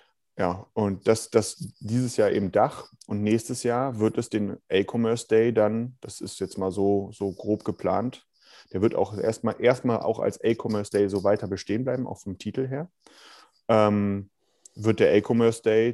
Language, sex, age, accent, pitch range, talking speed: German, male, 30-49, German, 100-120 Hz, 175 wpm